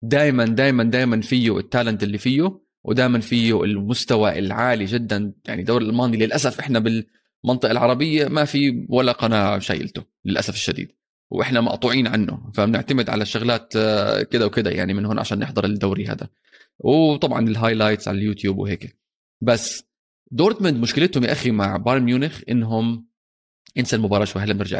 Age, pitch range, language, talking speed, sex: 20-39, 105-125 Hz, Arabic, 145 wpm, male